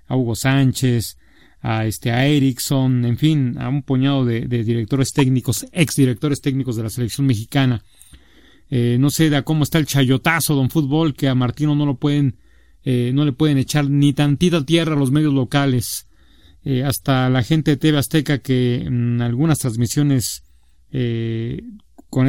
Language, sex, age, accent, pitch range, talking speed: Spanish, male, 40-59, Mexican, 125-150 Hz, 175 wpm